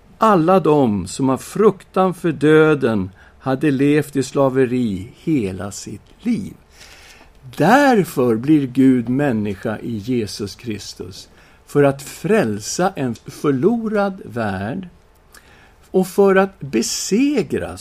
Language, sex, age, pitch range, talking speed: Swedish, male, 60-79, 130-195 Hz, 105 wpm